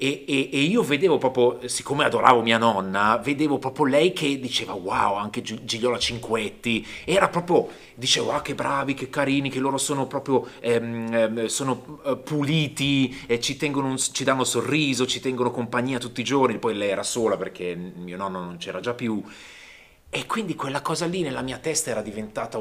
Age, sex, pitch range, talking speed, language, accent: 30-49, male, 115-140 Hz, 185 wpm, Italian, native